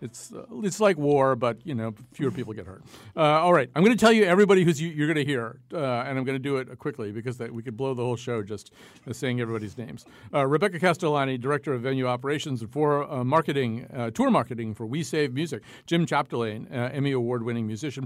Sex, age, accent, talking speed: male, 50-69, American, 235 wpm